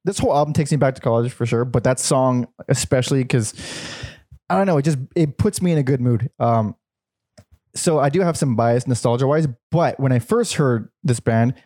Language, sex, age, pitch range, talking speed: English, male, 20-39, 120-155 Hz, 220 wpm